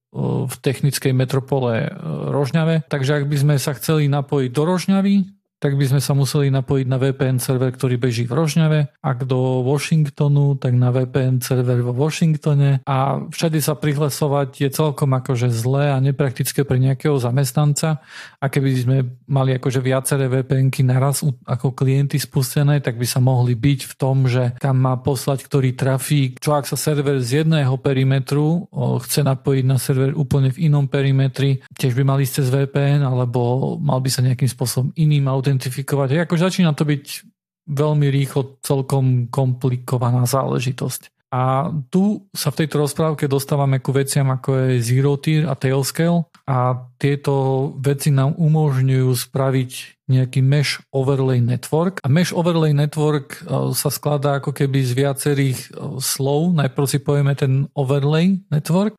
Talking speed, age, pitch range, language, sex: 155 wpm, 40-59, 130-150 Hz, Slovak, male